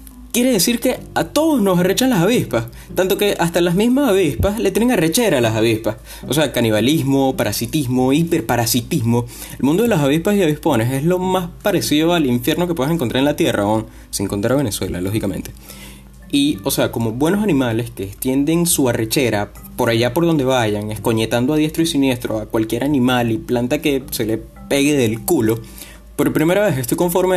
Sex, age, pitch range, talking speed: male, 20-39, 115-175 Hz, 190 wpm